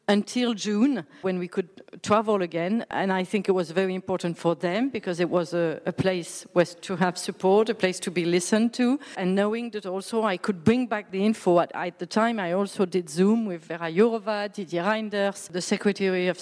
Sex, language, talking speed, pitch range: female, English, 210 wpm, 175-205 Hz